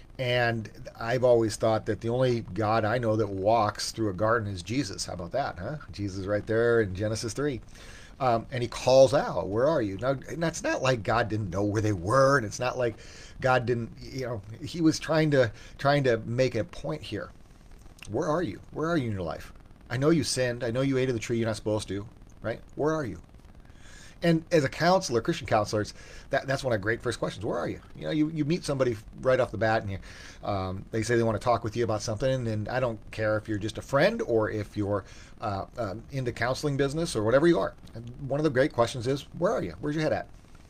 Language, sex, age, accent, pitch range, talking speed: English, male, 40-59, American, 105-130 Hz, 250 wpm